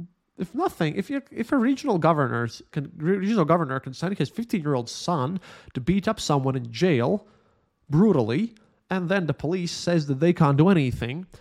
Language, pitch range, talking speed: English, 125-180 Hz, 180 wpm